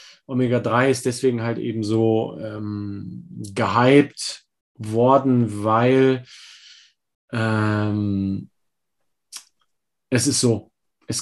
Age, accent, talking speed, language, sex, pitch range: 30-49, German, 80 wpm, German, male, 105-130 Hz